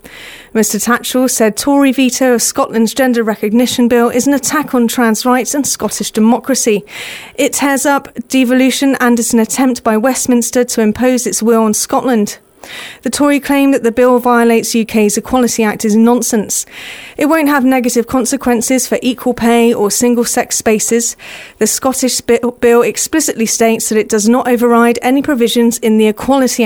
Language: English